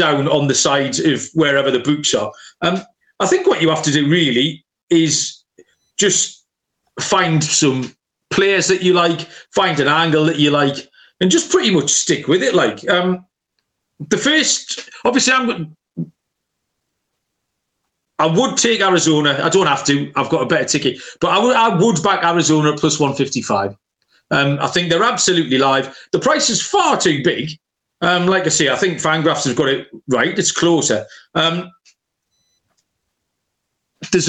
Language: English